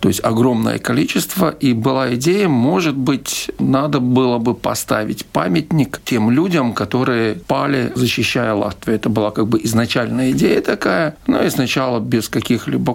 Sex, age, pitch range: male, 50-69, 105-125 Hz